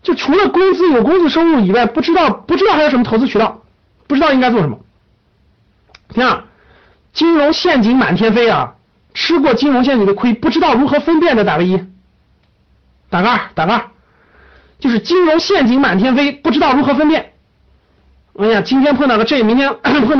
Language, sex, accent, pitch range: Chinese, male, native, 200-290 Hz